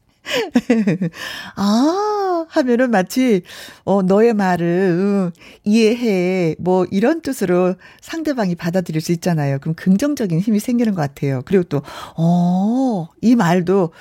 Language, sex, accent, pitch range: Korean, female, native, 185-265 Hz